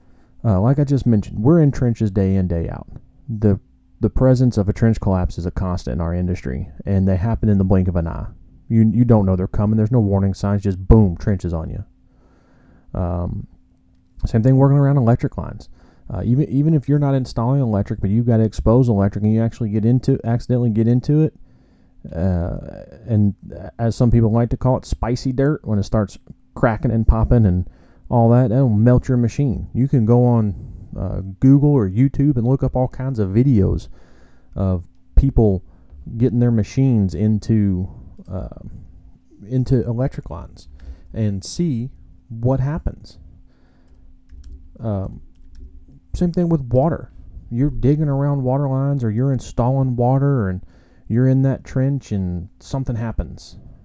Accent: American